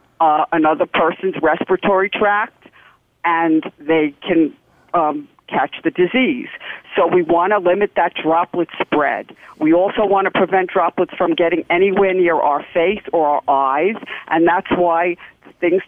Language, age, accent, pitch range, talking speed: English, 50-69, American, 165-210 Hz, 145 wpm